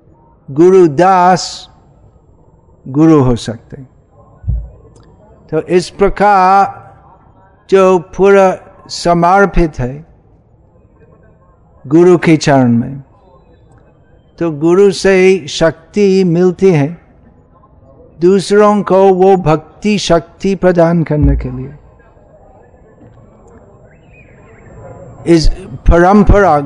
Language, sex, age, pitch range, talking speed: Hindi, male, 60-79, 140-190 Hz, 70 wpm